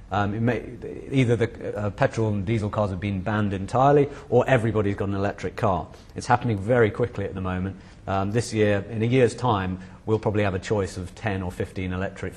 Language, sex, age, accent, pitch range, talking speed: English, male, 40-59, British, 100-125 Hz, 200 wpm